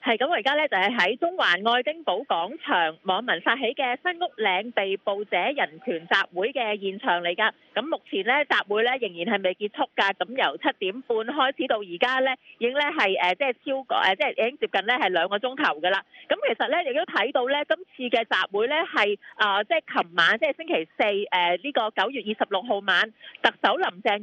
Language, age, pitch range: English, 30-49, 200-295 Hz